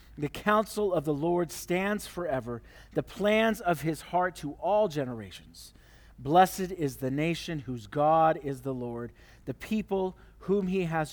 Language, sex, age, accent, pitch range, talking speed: English, male, 40-59, American, 130-175 Hz, 155 wpm